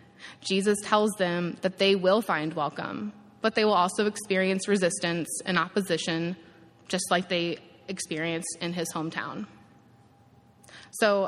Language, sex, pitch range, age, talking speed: English, female, 170-200 Hz, 20-39, 130 wpm